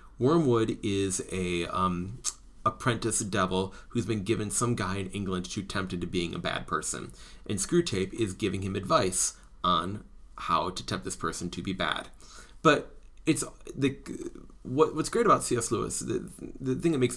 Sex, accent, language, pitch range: male, American, English, 95-120 Hz